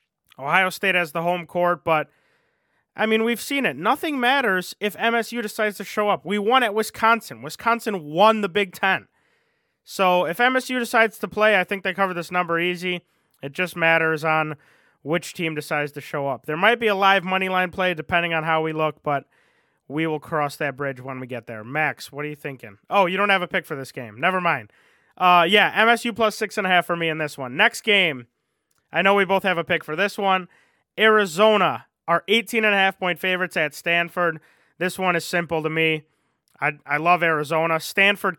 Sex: male